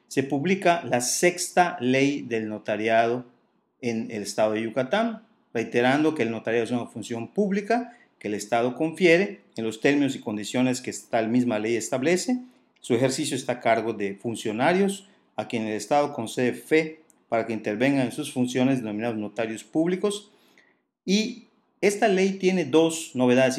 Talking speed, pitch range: 160 wpm, 115-160 Hz